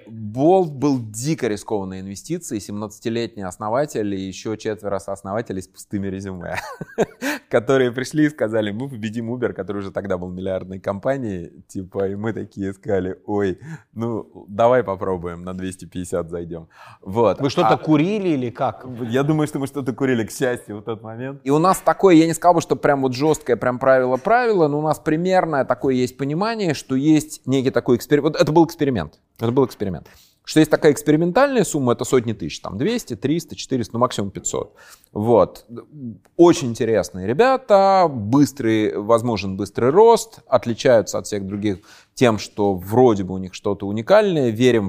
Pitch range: 100-145 Hz